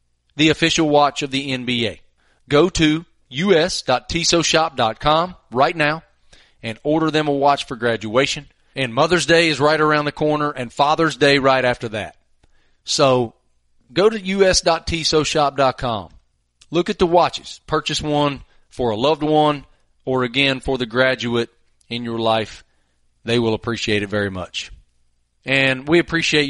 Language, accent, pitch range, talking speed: English, American, 120-150 Hz, 145 wpm